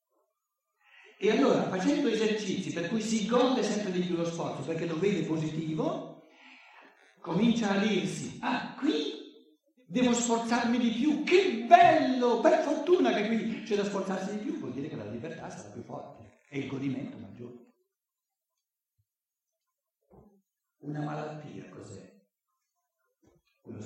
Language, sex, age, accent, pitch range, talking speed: Italian, male, 60-79, native, 150-245 Hz, 135 wpm